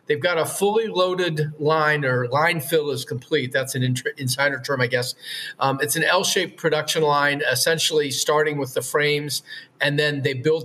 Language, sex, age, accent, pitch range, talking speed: English, male, 40-59, American, 135-160 Hz, 180 wpm